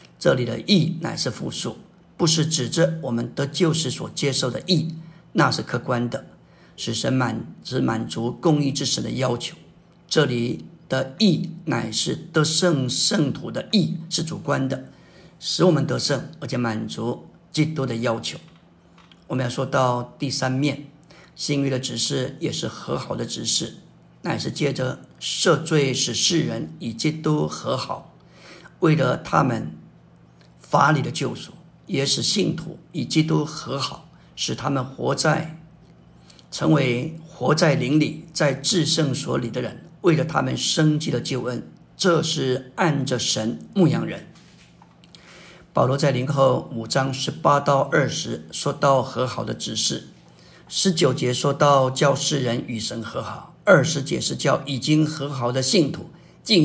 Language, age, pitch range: Chinese, 50-69, 125-160 Hz